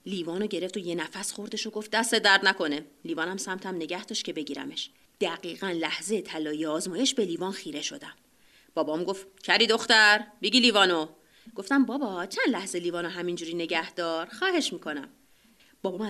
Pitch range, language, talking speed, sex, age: 170-240 Hz, Persian, 150 wpm, female, 30-49